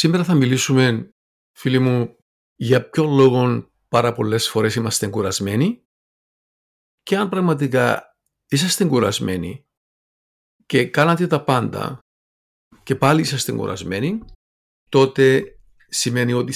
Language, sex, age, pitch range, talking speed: Greek, male, 50-69, 115-150 Hz, 105 wpm